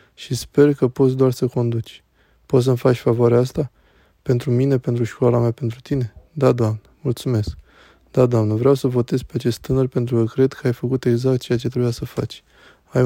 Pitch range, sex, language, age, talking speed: 115-130 Hz, male, Romanian, 20-39, 200 wpm